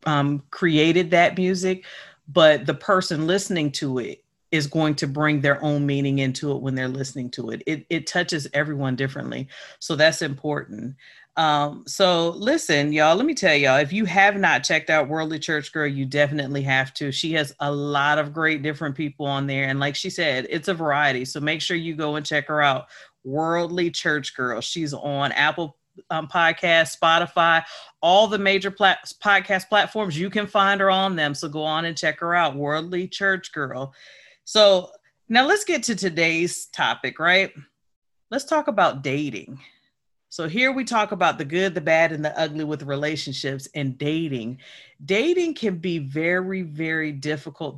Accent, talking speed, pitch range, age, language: American, 180 wpm, 145-175 Hz, 40-59, English